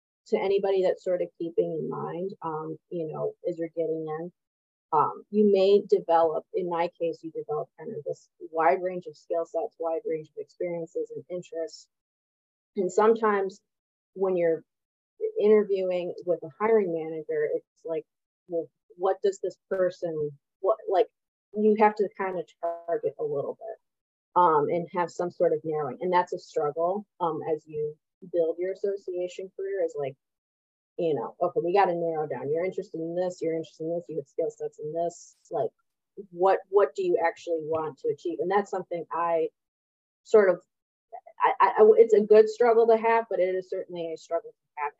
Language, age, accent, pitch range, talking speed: English, 30-49, American, 165-230 Hz, 185 wpm